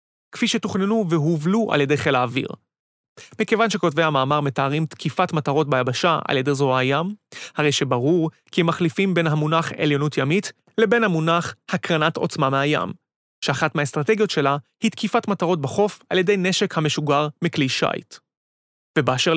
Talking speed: 145 wpm